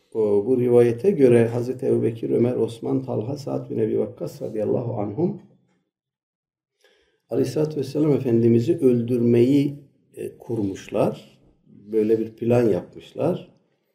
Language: Turkish